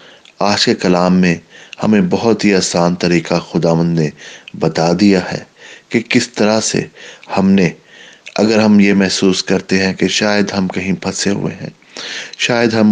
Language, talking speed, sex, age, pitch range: English, 155 wpm, male, 30-49, 95-110 Hz